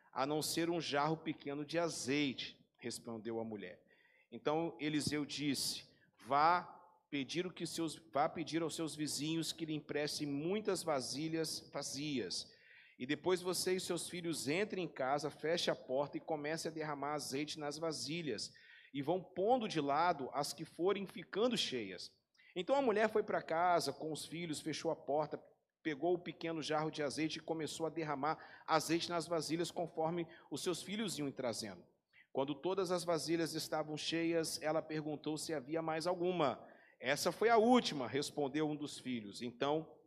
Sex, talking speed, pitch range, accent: male, 165 wpm, 145-170 Hz, Brazilian